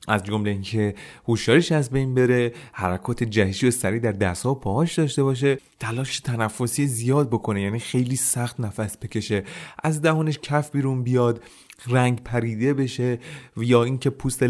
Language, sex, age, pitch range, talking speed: Persian, male, 30-49, 110-150 Hz, 155 wpm